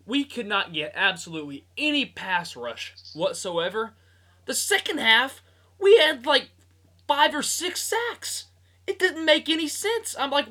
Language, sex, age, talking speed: English, male, 20-39, 150 wpm